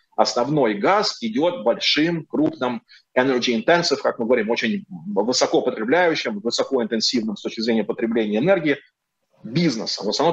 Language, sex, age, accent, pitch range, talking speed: Russian, male, 30-49, native, 125-195 Hz, 135 wpm